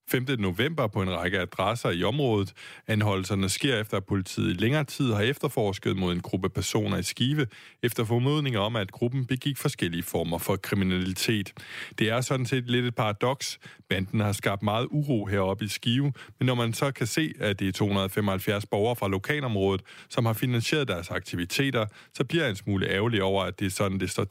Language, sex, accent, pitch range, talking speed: Danish, male, native, 100-130 Hz, 195 wpm